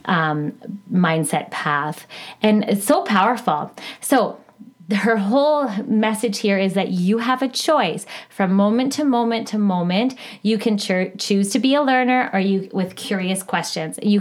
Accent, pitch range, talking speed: American, 185-225 Hz, 160 wpm